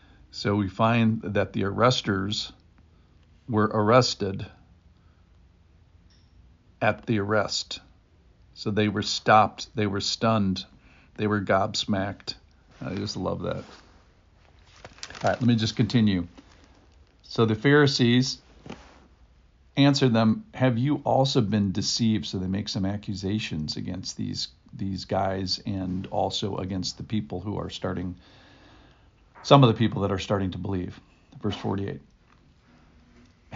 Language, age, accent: English, 50-69, American